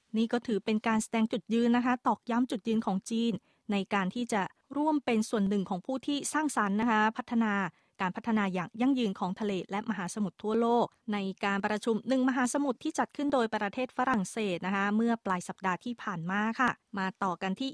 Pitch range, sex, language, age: 200-245 Hz, female, Thai, 20-39